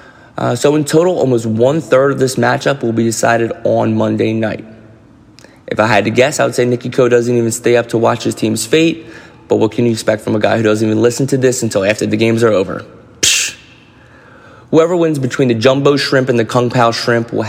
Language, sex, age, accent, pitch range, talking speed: English, male, 20-39, American, 110-130 Hz, 235 wpm